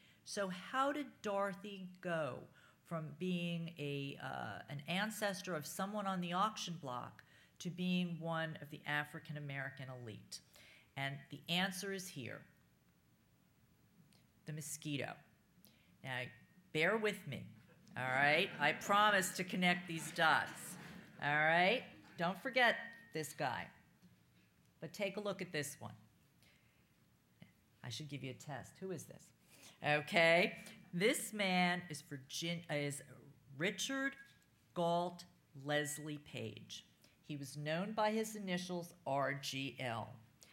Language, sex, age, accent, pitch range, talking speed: English, female, 40-59, American, 140-185 Hz, 120 wpm